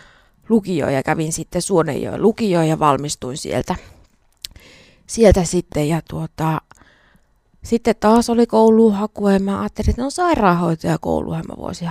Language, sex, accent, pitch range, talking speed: Finnish, female, native, 150-210 Hz, 140 wpm